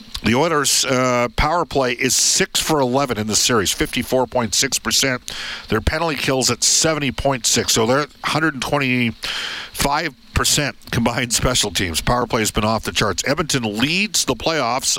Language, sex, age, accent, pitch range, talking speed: English, male, 50-69, American, 110-140 Hz, 140 wpm